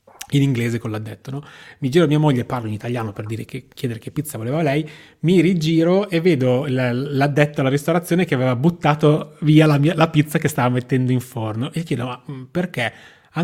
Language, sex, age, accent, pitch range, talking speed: Italian, male, 30-49, native, 125-155 Hz, 205 wpm